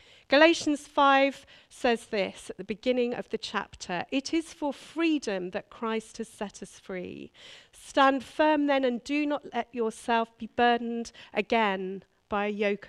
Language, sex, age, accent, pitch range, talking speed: English, female, 40-59, British, 210-280 Hz, 160 wpm